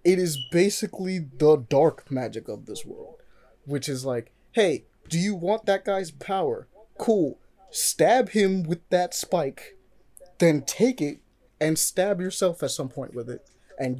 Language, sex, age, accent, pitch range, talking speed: English, male, 20-39, American, 135-180 Hz, 160 wpm